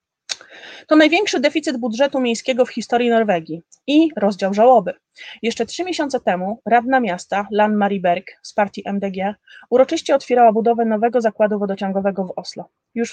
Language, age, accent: Polish, 30-49, native